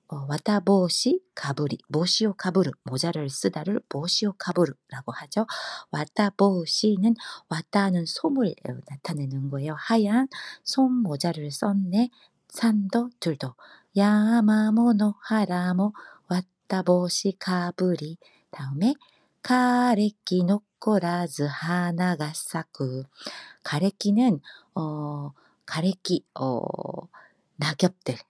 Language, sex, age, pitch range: Korean, female, 40-59, 145-210 Hz